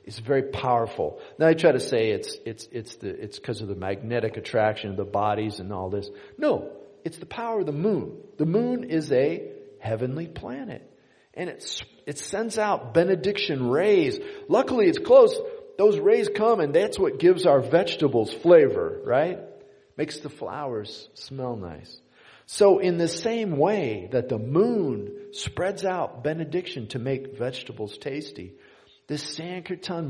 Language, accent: English, American